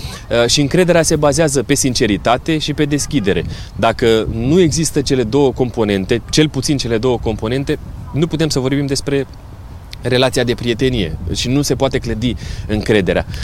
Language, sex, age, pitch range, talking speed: Romanian, male, 20-39, 110-150 Hz, 150 wpm